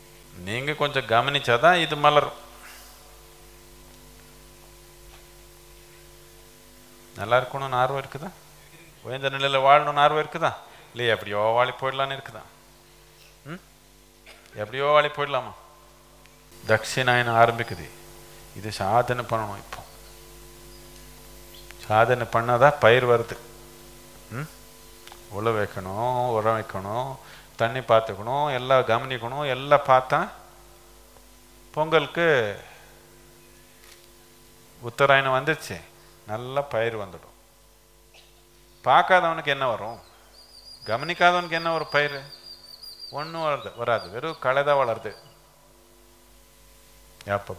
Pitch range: 110-145 Hz